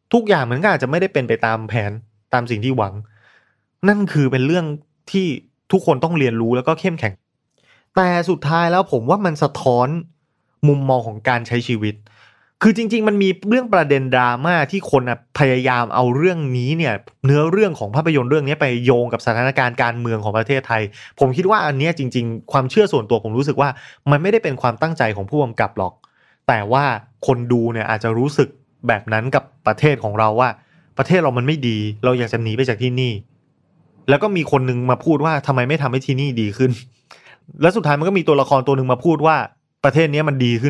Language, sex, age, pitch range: Thai, male, 20-39, 120-155 Hz